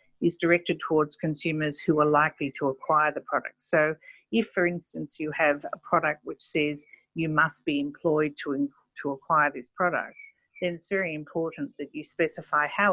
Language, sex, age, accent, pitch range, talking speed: English, female, 50-69, Australian, 150-180 Hz, 175 wpm